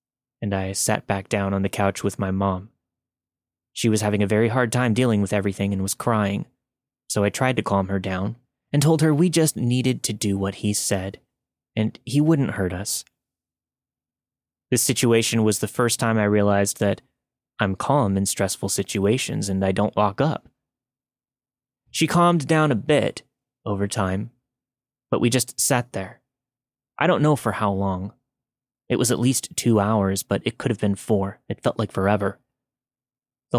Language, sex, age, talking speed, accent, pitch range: English, male, 20-39, 180 wpm, American, 100-130 Hz